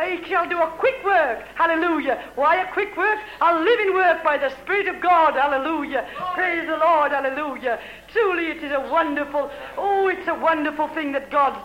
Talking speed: 185 wpm